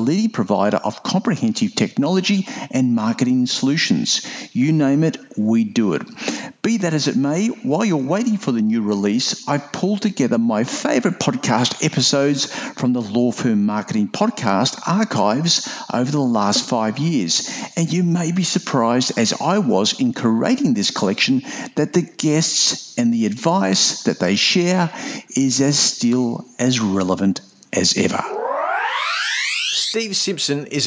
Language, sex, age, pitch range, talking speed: English, male, 50-69, 115-185 Hz, 150 wpm